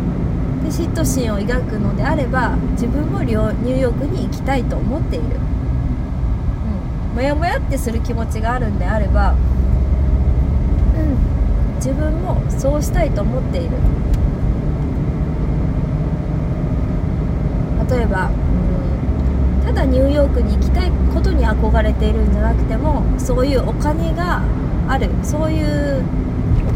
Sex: female